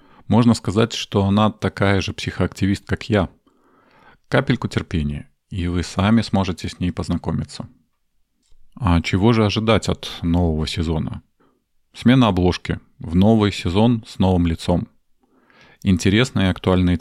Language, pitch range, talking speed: Russian, 85-105 Hz, 125 wpm